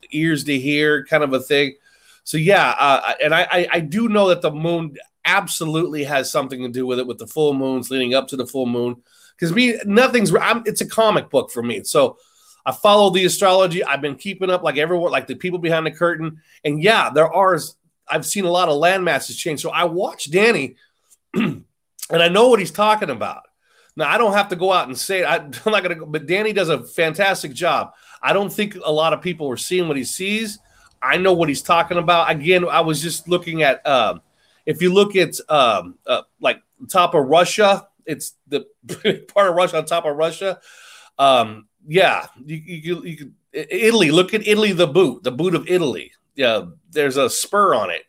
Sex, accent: male, American